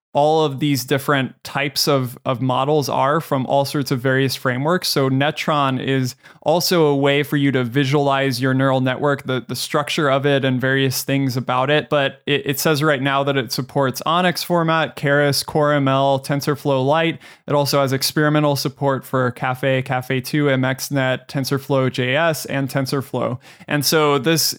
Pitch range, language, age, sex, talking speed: 135-150 Hz, English, 20-39, male, 170 wpm